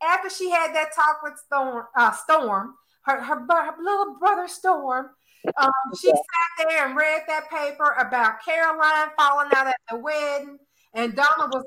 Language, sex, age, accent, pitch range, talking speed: English, female, 40-59, American, 270-360 Hz, 170 wpm